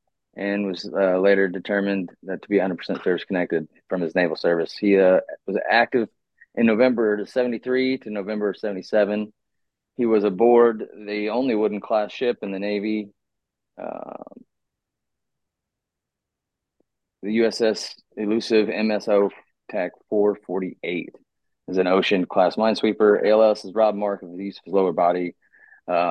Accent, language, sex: American, English, male